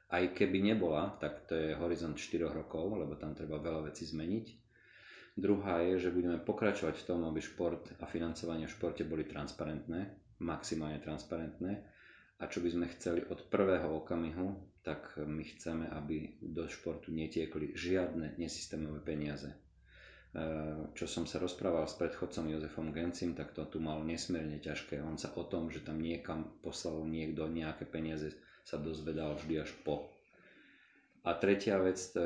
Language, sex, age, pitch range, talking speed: Slovak, male, 30-49, 75-85 Hz, 155 wpm